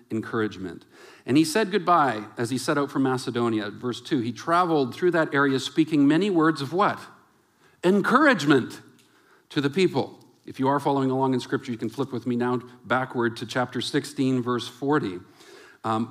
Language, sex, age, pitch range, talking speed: English, male, 50-69, 125-170 Hz, 175 wpm